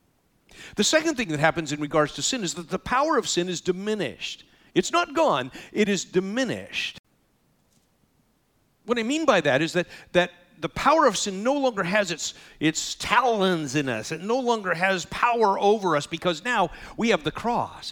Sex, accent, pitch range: male, American, 150-215 Hz